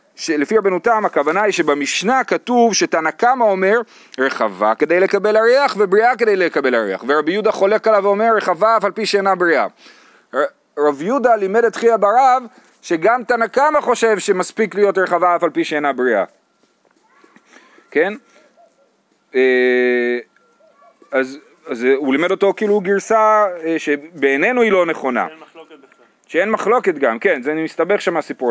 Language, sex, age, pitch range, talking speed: Hebrew, male, 30-49, 145-220 Hz, 140 wpm